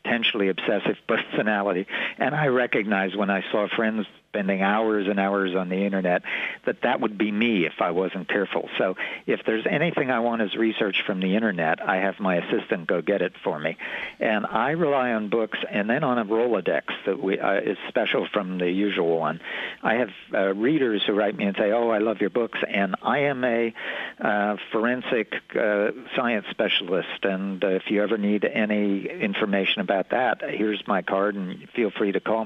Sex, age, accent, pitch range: male, 60-79, American, 95-110 Hz